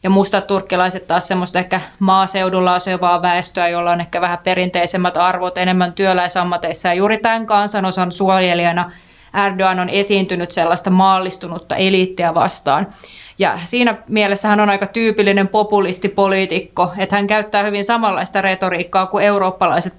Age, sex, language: 20-39, female, Finnish